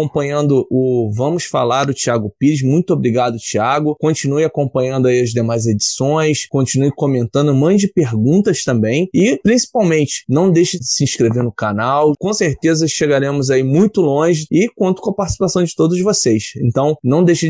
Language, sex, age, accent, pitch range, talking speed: Portuguese, male, 20-39, Brazilian, 130-165 Hz, 160 wpm